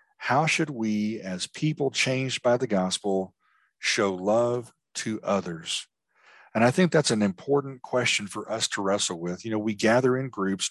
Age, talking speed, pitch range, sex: 50-69, 175 wpm, 100-130 Hz, male